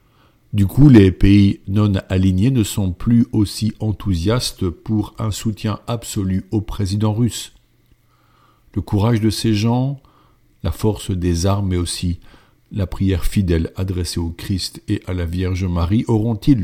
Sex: male